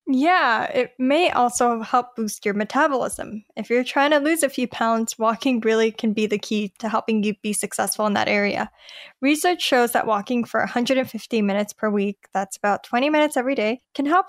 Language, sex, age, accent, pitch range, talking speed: English, female, 10-29, American, 215-260 Hz, 195 wpm